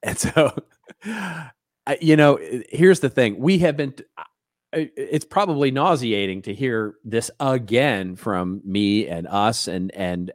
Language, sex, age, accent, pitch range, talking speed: English, male, 40-59, American, 90-110 Hz, 135 wpm